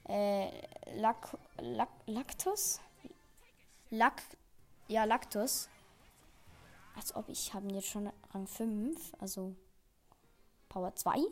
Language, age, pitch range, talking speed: German, 20-39, 215-300 Hz, 100 wpm